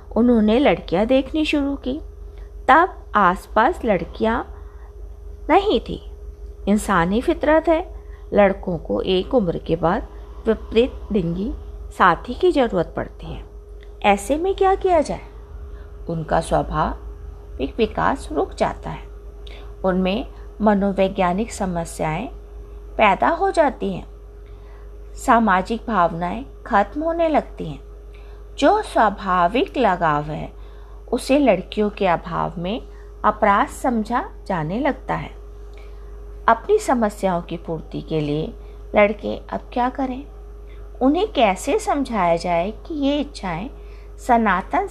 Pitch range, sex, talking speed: 175-270 Hz, female, 115 wpm